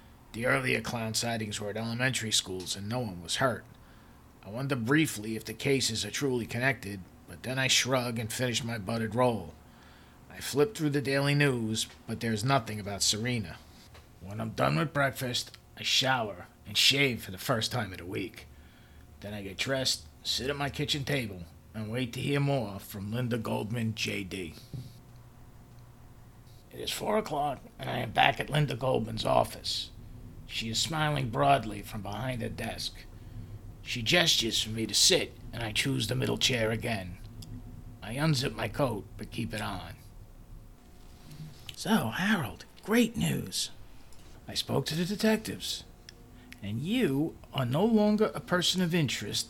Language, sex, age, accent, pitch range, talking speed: English, male, 40-59, American, 105-130 Hz, 165 wpm